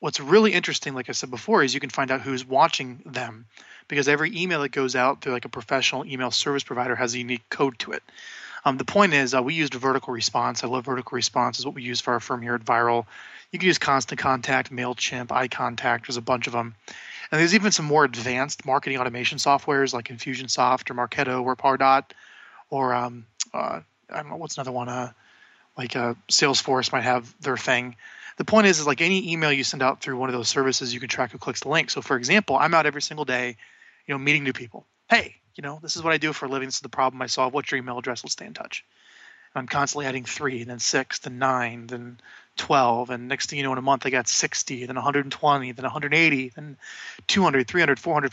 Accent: American